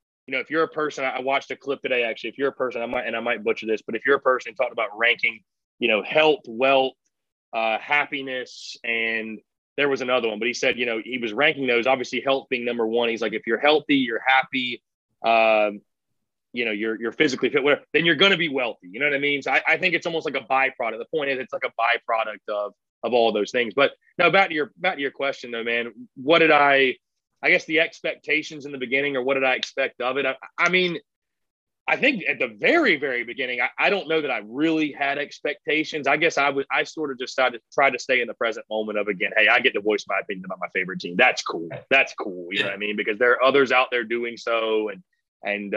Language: English